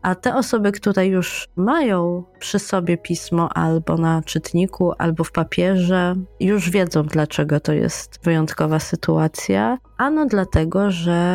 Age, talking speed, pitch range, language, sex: 20-39, 130 wpm, 175-210 Hz, Polish, female